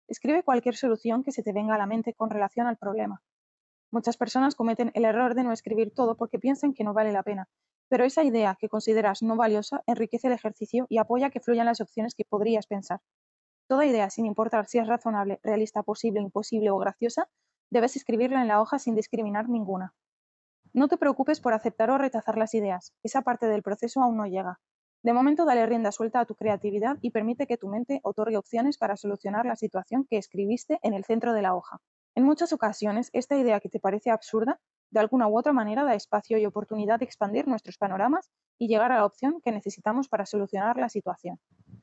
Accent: Spanish